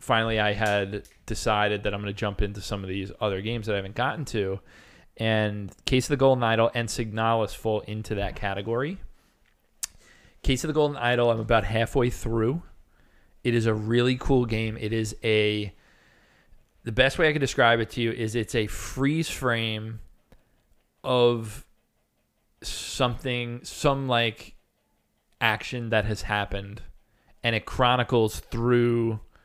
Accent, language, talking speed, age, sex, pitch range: American, English, 155 wpm, 20-39, male, 105-120 Hz